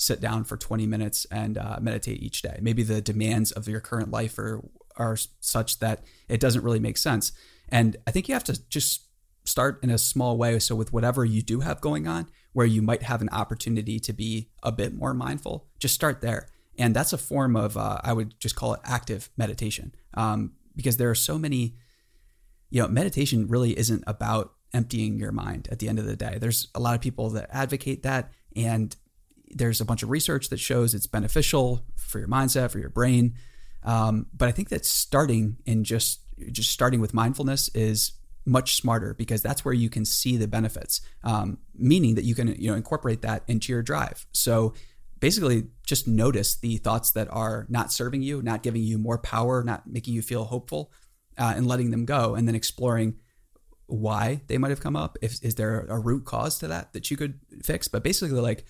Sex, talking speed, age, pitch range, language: male, 210 wpm, 30-49, 110-125 Hz, English